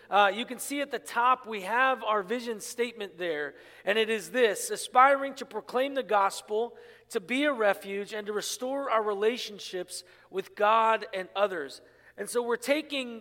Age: 40-59